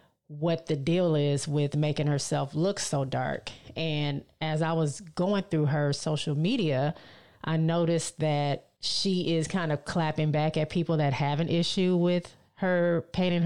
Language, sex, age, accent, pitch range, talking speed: English, female, 30-49, American, 150-175 Hz, 165 wpm